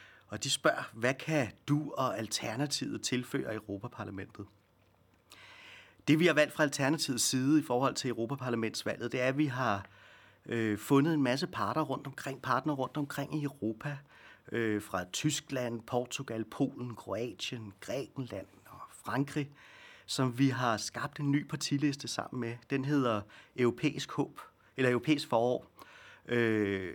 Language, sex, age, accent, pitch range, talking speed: Danish, male, 30-49, native, 110-140 Hz, 140 wpm